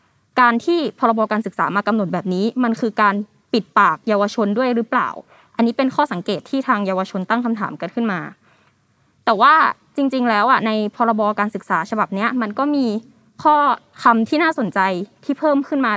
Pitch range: 205-255 Hz